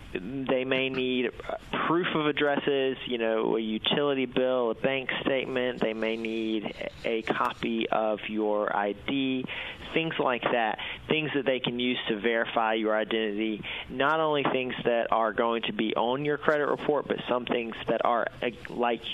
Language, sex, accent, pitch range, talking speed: English, male, American, 115-135 Hz, 165 wpm